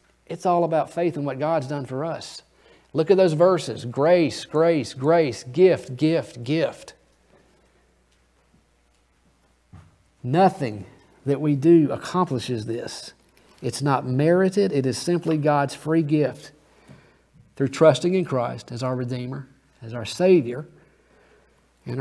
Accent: American